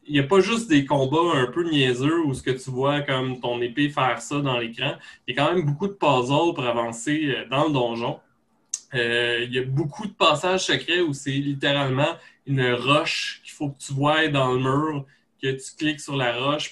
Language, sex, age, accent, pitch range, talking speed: French, male, 20-39, Canadian, 130-170 Hz, 225 wpm